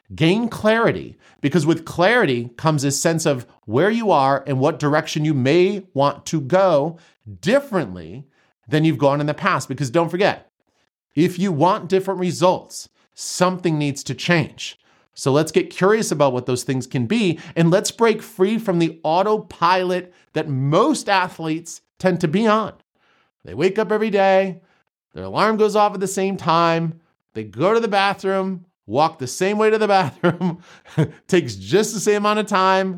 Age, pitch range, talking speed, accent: 40-59, 150-195 Hz, 175 wpm, American